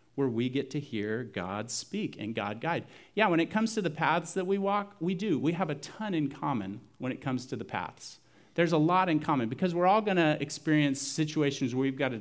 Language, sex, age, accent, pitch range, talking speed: English, male, 40-59, American, 120-155 Hz, 240 wpm